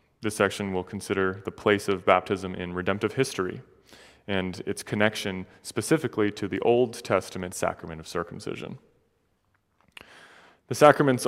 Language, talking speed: English, 130 wpm